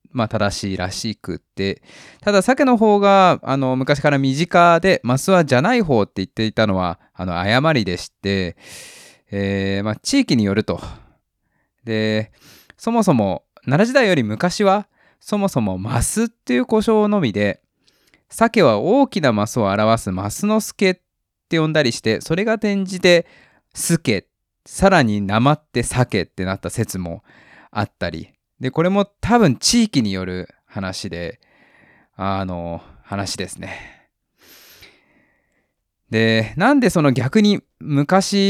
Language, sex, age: Japanese, male, 20-39